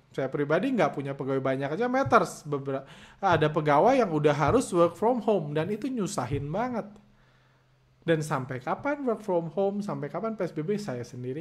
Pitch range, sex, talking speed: 130-170 Hz, male, 165 wpm